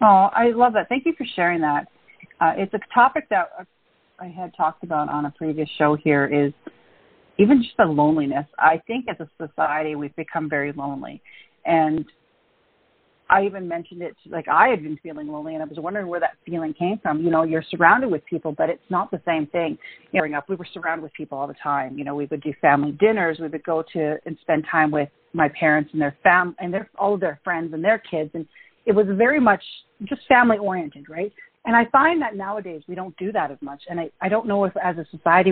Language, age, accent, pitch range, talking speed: English, 40-59, American, 155-200 Hz, 235 wpm